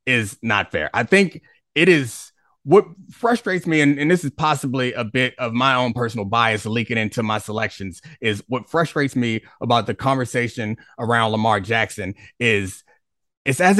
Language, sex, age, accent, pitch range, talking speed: English, male, 30-49, American, 120-180 Hz, 170 wpm